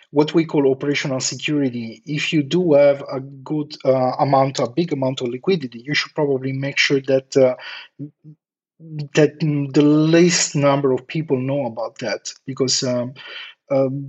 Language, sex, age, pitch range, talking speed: English, male, 30-49, 130-150 Hz, 160 wpm